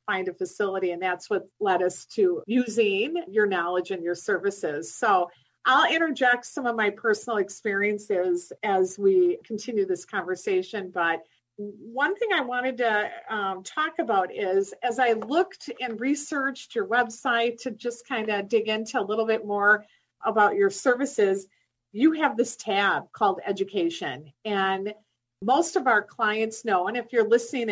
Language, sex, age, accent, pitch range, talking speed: English, female, 40-59, American, 195-270 Hz, 160 wpm